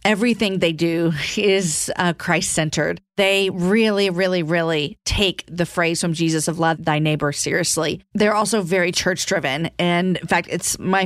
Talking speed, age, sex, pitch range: 155 wpm, 40-59, female, 165-195 Hz